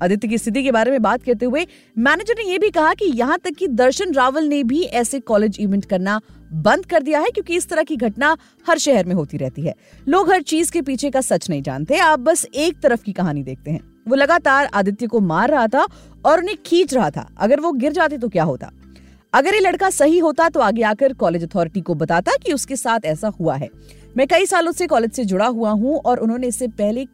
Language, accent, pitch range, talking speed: Hindi, native, 210-320 Hz, 240 wpm